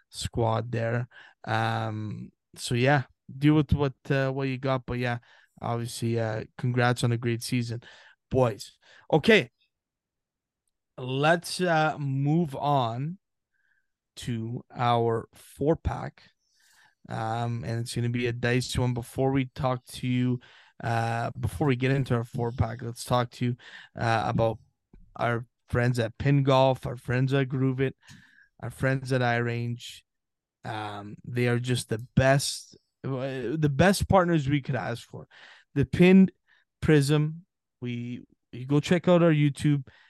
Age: 20-39